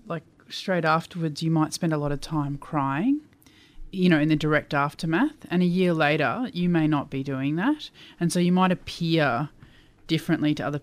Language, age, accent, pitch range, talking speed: English, 20-39, Australian, 145-175 Hz, 195 wpm